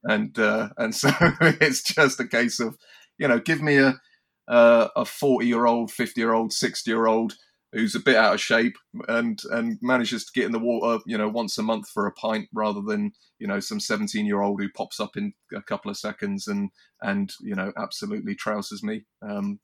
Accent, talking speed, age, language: British, 215 wpm, 30-49, English